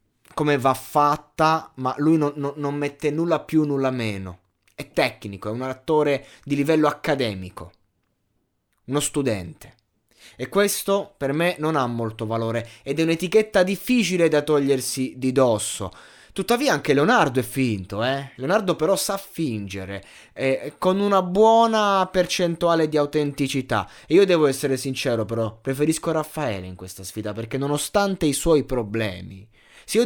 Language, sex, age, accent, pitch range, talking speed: Italian, male, 20-39, native, 120-175 Hz, 150 wpm